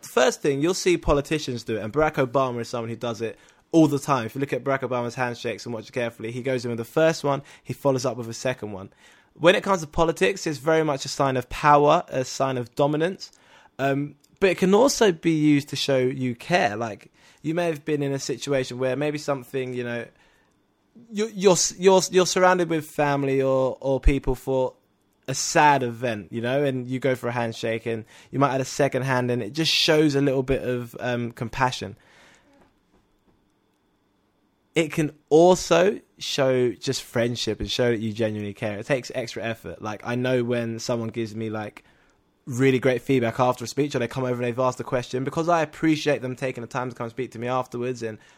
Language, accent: English, British